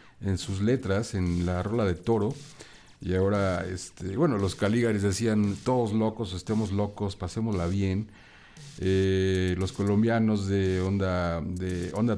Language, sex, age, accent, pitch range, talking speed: Spanish, male, 50-69, Mexican, 95-135 Hz, 140 wpm